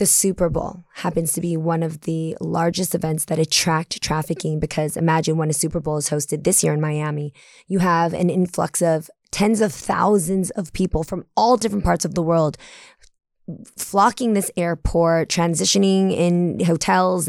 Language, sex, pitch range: English, female, 160-190 Hz